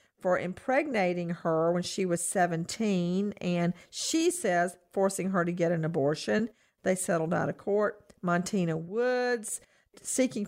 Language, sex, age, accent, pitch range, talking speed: English, female, 50-69, American, 175-215 Hz, 135 wpm